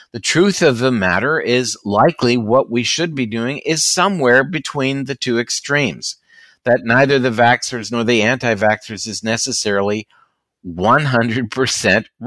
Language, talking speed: English, 135 wpm